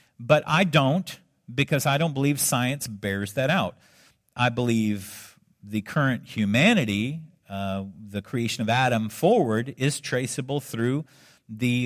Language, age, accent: English, 50-69, American